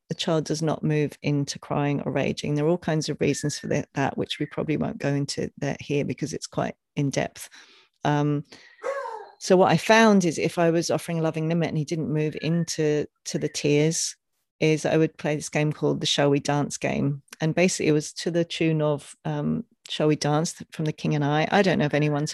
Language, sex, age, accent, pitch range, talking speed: English, female, 40-59, British, 150-200 Hz, 230 wpm